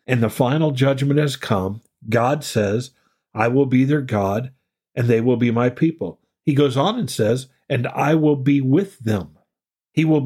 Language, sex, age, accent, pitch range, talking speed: English, male, 50-69, American, 125-155 Hz, 185 wpm